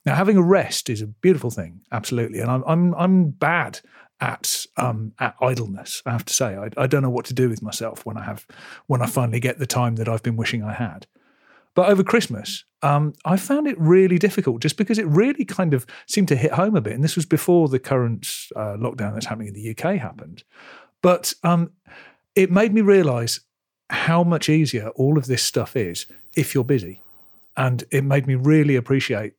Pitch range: 115-165 Hz